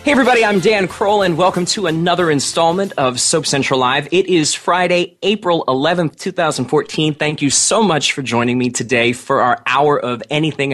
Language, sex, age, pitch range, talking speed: English, male, 30-49, 125-165 Hz, 185 wpm